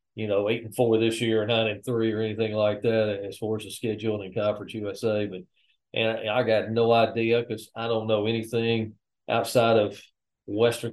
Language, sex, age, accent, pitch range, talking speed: English, male, 40-59, American, 100-115 Hz, 210 wpm